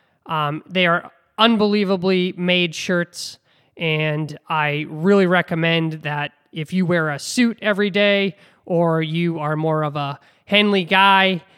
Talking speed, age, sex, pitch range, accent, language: 135 wpm, 20-39, male, 150-190 Hz, American, English